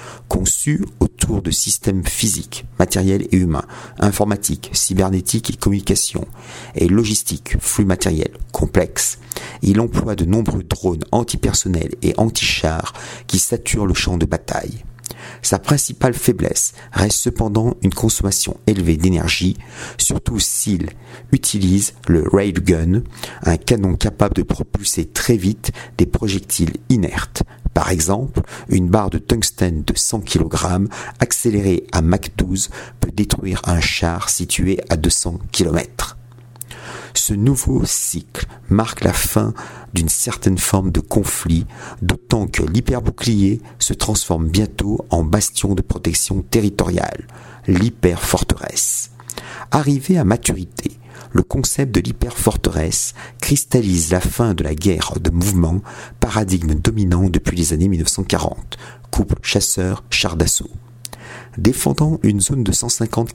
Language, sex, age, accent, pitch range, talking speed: French, male, 50-69, French, 90-115 Hz, 125 wpm